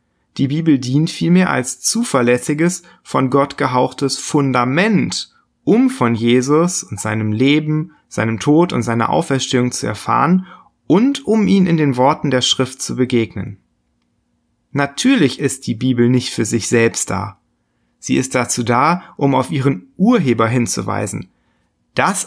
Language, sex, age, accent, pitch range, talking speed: German, male, 30-49, German, 115-150 Hz, 140 wpm